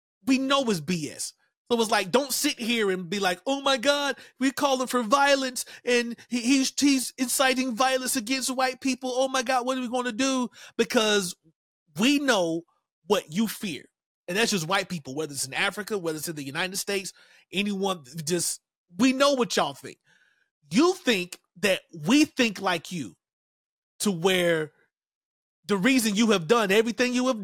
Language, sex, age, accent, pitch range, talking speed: English, male, 30-49, American, 175-240 Hz, 185 wpm